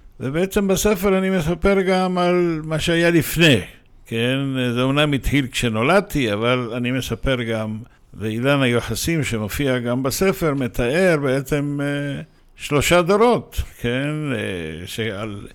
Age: 60-79